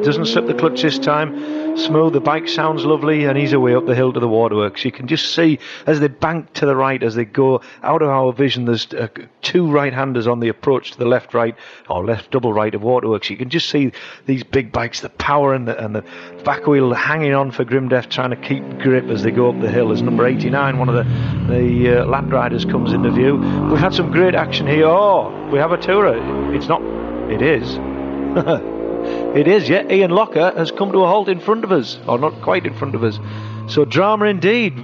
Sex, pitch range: male, 120-160 Hz